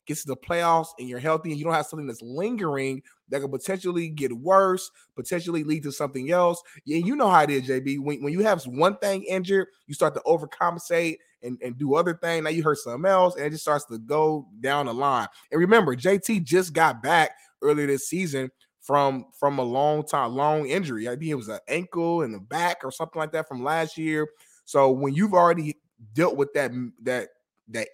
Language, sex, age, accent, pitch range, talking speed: English, male, 20-39, American, 135-165 Hz, 220 wpm